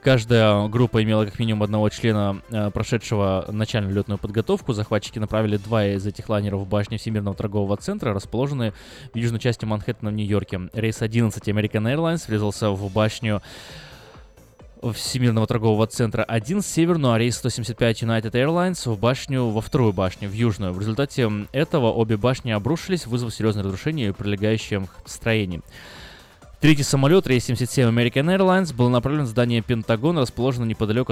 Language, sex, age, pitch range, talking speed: Russian, male, 20-39, 105-125 Hz, 150 wpm